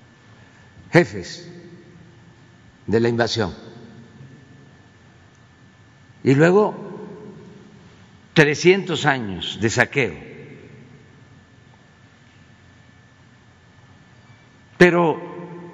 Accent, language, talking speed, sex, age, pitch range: Mexican, Spanish, 40 wpm, male, 50-69, 115-155 Hz